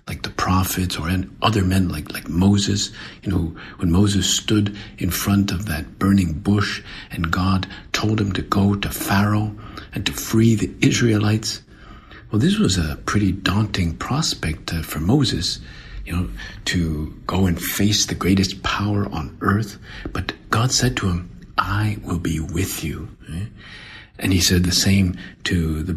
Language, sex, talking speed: English, male, 160 wpm